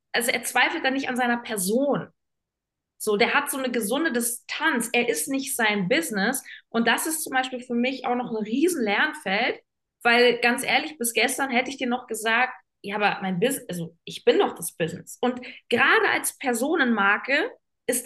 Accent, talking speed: German, 190 wpm